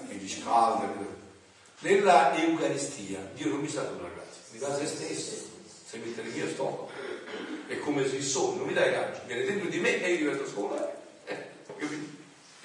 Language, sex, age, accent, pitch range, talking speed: Italian, male, 40-59, native, 95-145 Hz, 175 wpm